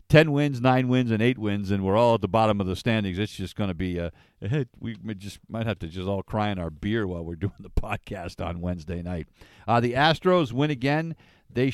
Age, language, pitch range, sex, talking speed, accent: 50-69, English, 95-130 Hz, male, 250 wpm, American